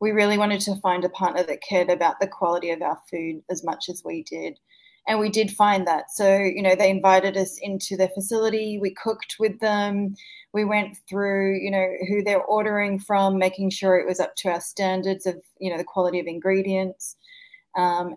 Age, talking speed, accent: 20-39, 210 wpm, Australian